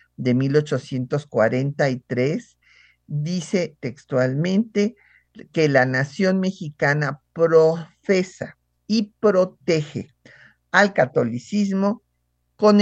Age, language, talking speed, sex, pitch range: 50-69, Spanish, 65 wpm, male, 125-165 Hz